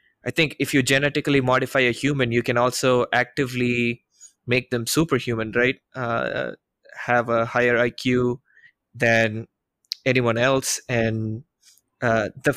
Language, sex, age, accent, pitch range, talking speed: English, male, 20-39, Indian, 120-140 Hz, 130 wpm